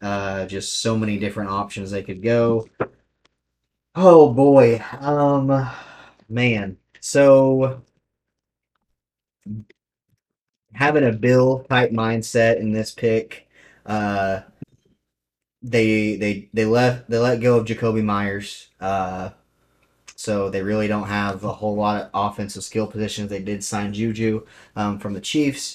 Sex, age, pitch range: male, 30-49, 100-120 Hz